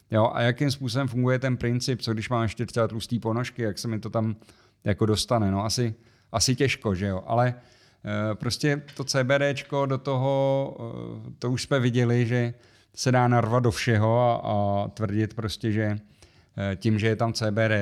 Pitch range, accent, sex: 105-125 Hz, native, male